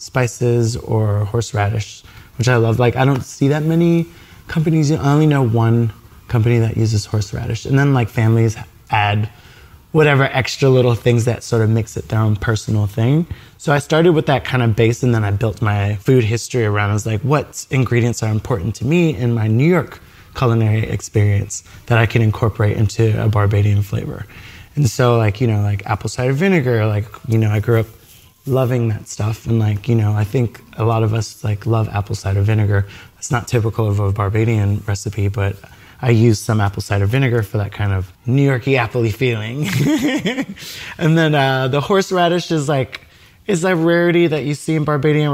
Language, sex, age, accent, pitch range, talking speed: English, male, 20-39, American, 110-130 Hz, 195 wpm